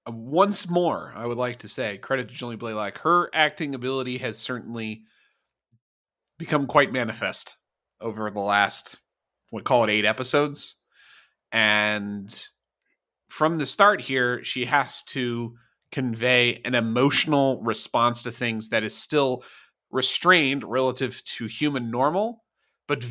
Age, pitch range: 30-49, 115-150 Hz